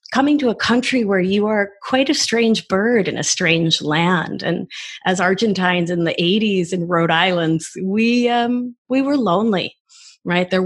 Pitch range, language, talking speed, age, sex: 160-215 Hz, English, 175 wpm, 30-49, female